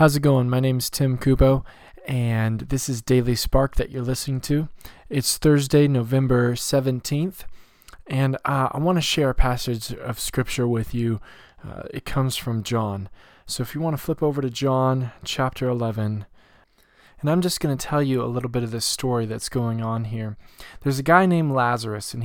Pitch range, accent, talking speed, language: 115-145 Hz, American, 195 wpm, English